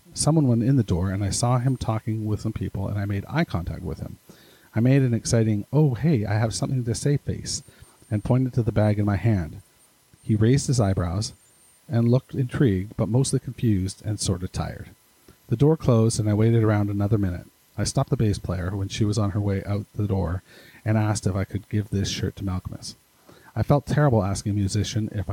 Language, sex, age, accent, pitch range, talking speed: English, male, 40-59, American, 100-125 Hz, 225 wpm